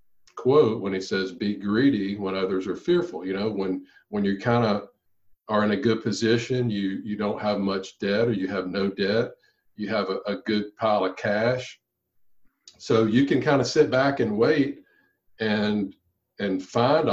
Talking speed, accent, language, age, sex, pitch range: 185 wpm, American, English, 50-69, male, 95-115 Hz